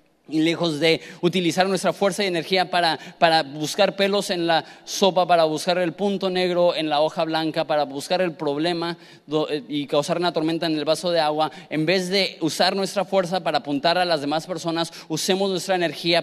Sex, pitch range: male, 160-190 Hz